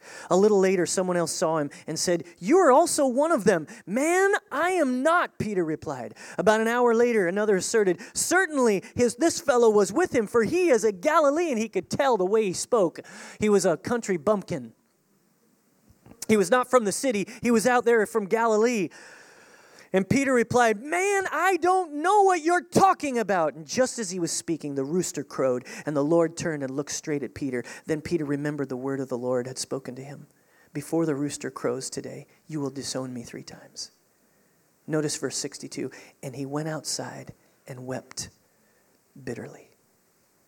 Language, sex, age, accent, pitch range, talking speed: English, male, 30-49, American, 150-240 Hz, 185 wpm